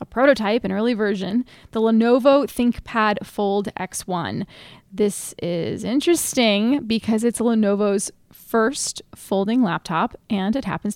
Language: English